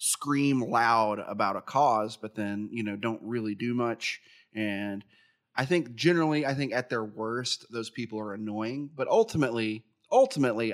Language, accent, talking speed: English, American, 160 wpm